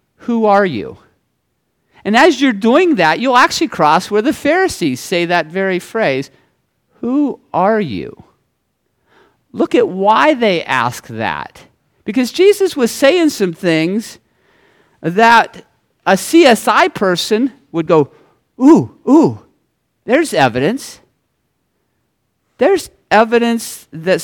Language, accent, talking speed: English, American, 115 wpm